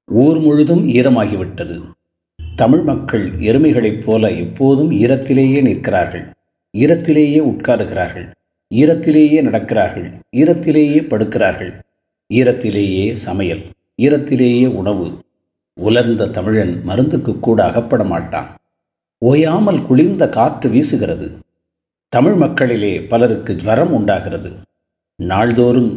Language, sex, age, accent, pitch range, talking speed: Tamil, male, 50-69, native, 100-135 Hz, 85 wpm